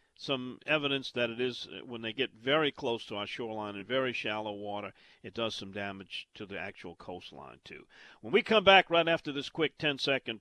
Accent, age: American, 50-69